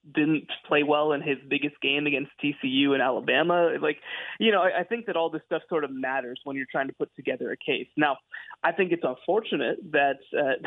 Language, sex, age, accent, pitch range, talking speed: English, male, 20-39, American, 140-165 Hz, 220 wpm